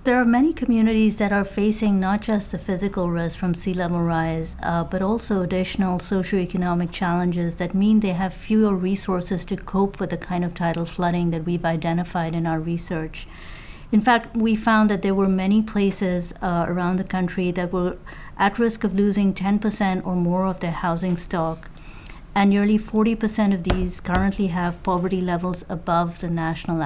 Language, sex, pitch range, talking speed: English, female, 170-200 Hz, 185 wpm